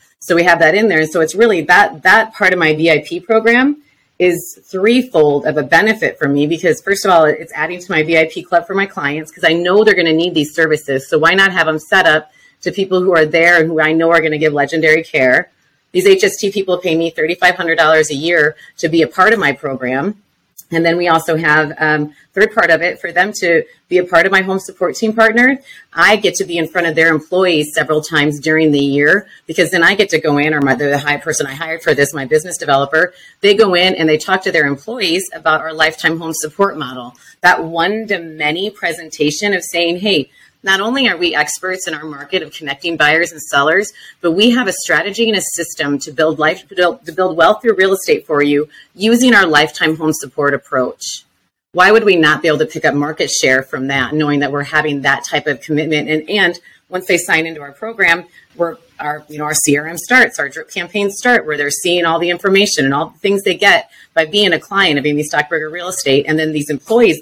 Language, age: English, 30-49